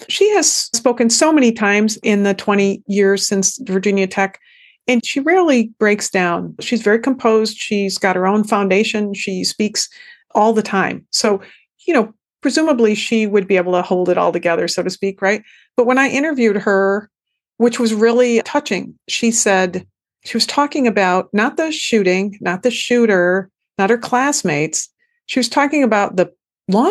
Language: English